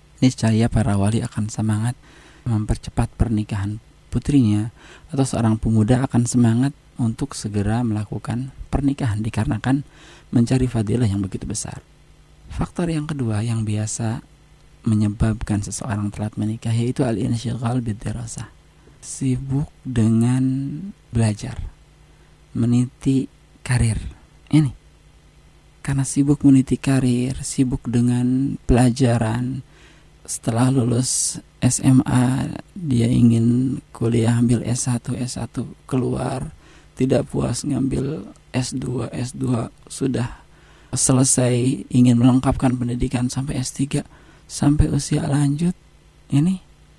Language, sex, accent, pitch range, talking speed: Indonesian, male, native, 115-135 Hz, 95 wpm